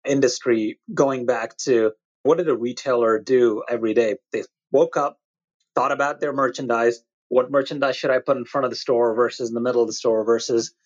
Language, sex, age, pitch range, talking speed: English, male, 30-49, 120-140 Hz, 200 wpm